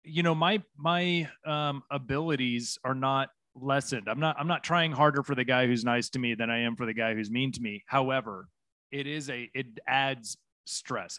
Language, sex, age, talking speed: English, male, 30-49, 210 wpm